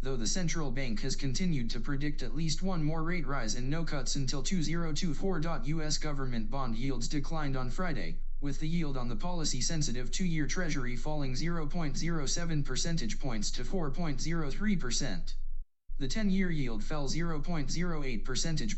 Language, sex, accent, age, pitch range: Chinese, male, American, 20-39, 130-170 Hz